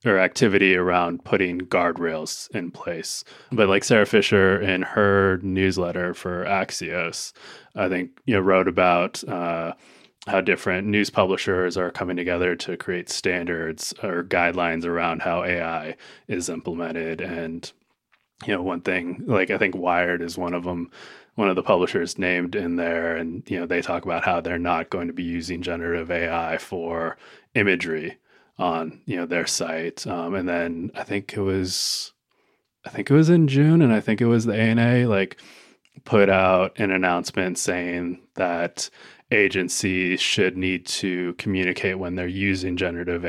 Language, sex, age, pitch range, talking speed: English, male, 20-39, 85-95 Hz, 165 wpm